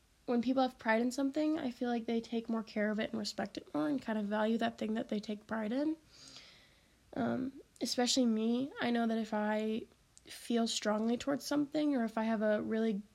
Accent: American